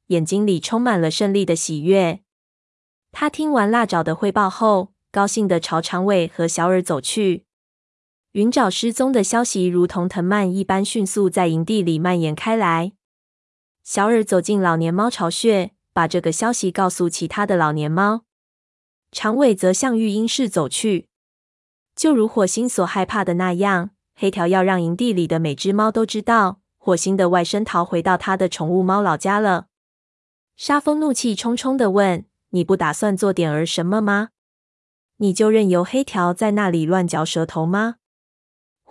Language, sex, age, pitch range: Chinese, female, 20-39, 175-220 Hz